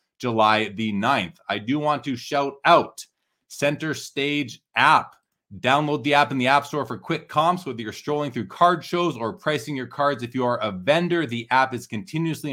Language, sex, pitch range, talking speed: English, male, 120-155 Hz, 195 wpm